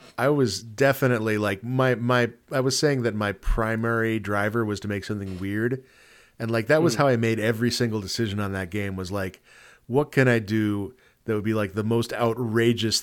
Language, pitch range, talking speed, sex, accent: English, 105-125 Hz, 205 wpm, male, American